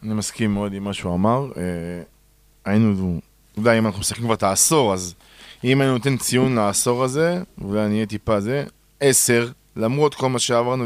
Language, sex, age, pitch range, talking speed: Hebrew, male, 20-39, 110-135 Hz, 180 wpm